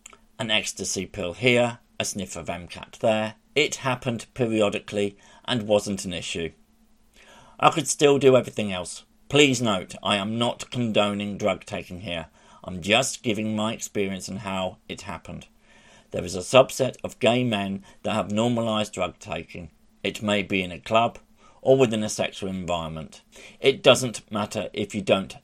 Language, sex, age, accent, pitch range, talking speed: English, male, 50-69, British, 95-120 Hz, 165 wpm